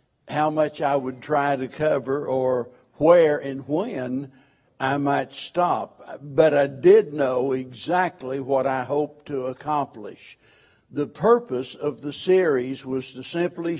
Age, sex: 60-79, male